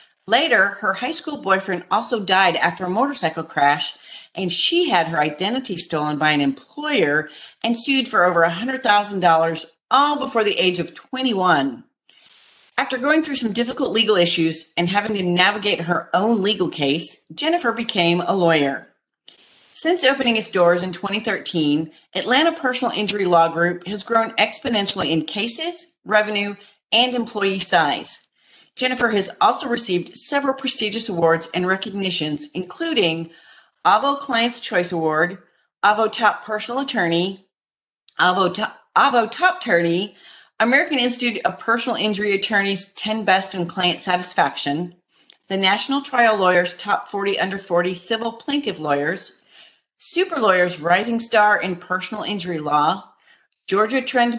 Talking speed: 140 wpm